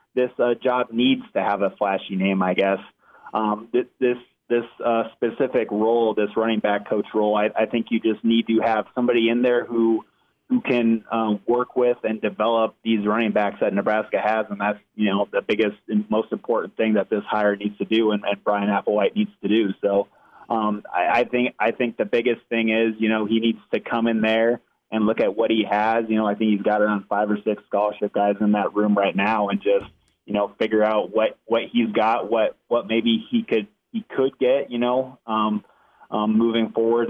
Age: 20-39